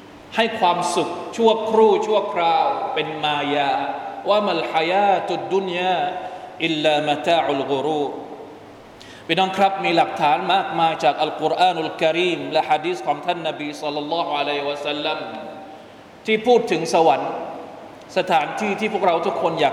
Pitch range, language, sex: 160-195 Hz, Thai, male